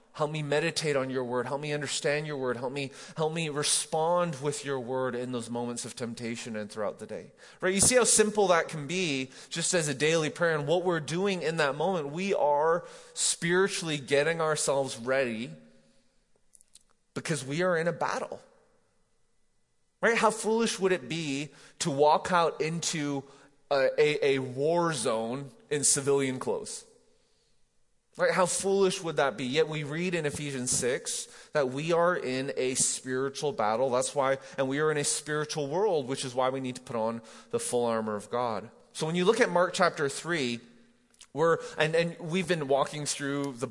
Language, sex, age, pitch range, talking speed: English, male, 20-39, 130-170 Hz, 185 wpm